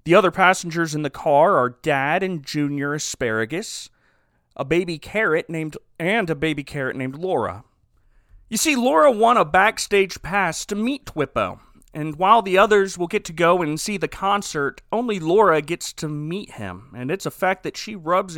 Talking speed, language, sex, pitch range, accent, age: 185 wpm, English, male, 150-215 Hz, American, 30-49